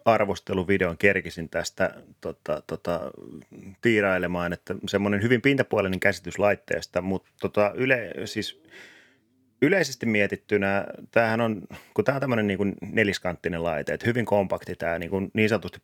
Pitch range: 85-105 Hz